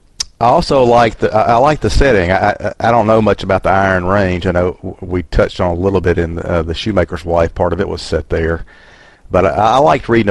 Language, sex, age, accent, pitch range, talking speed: English, male, 40-59, American, 85-100 Hz, 250 wpm